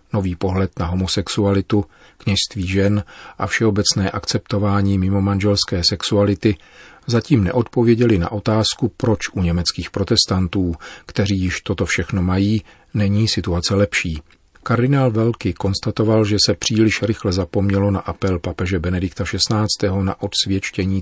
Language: Czech